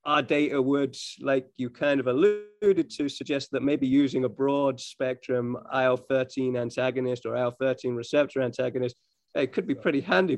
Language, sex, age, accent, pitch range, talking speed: English, male, 30-49, British, 125-150 Hz, 155 wpm